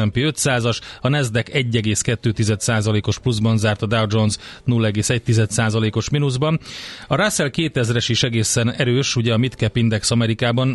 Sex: male